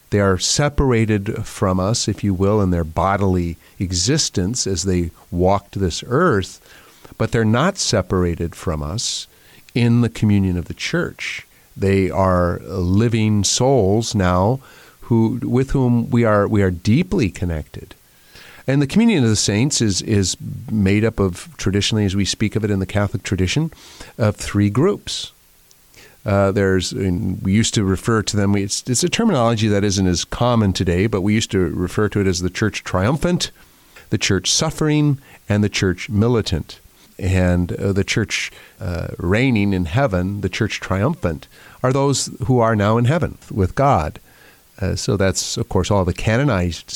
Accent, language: American, English